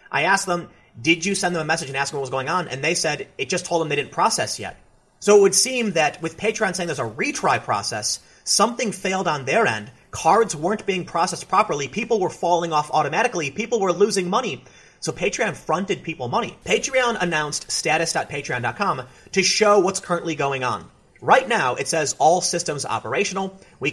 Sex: male